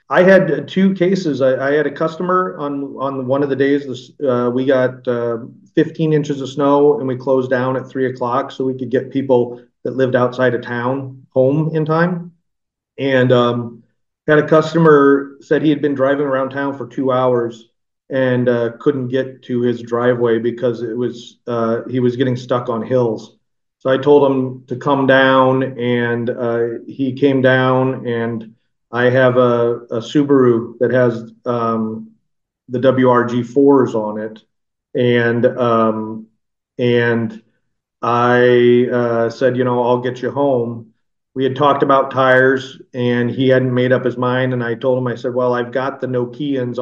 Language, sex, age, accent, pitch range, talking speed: English, male, 40-59, American, 120-135 Hz, 175 wpm